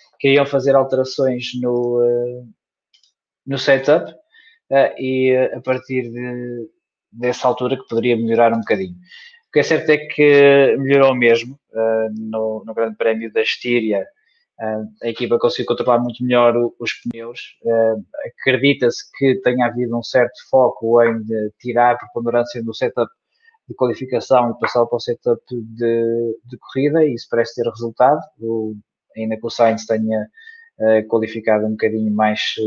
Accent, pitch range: Portuguese, 110-130 Hz